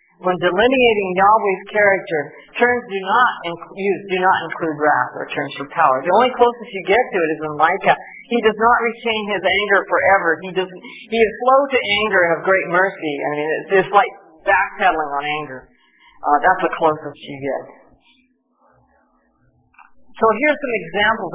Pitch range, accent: 165-225 Hz, American